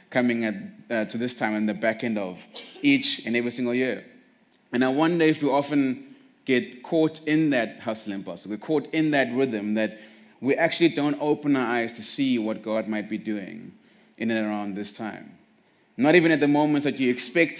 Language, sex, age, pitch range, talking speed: English, male, 30-49, 110-150 Hz, 210 wpm